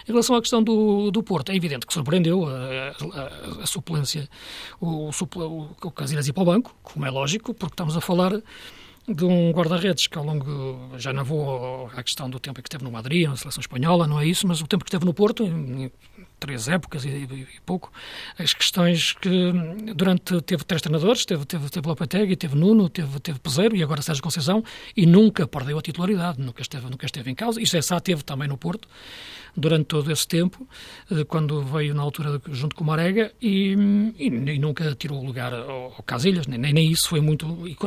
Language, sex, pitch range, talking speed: Portuguese, male, 140-180 Hz, 210 wpm